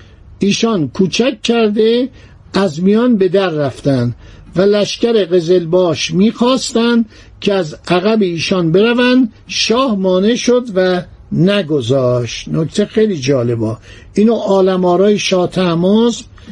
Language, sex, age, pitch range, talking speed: Persian, male, 60-79, 160-210 Hz, 100 wpm